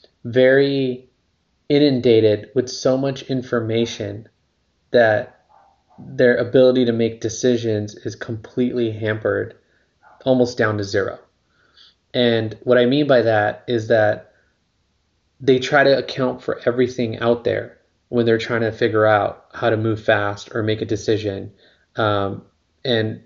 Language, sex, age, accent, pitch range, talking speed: English, male, 20-39, American, 110-130 Hz, 130 wpm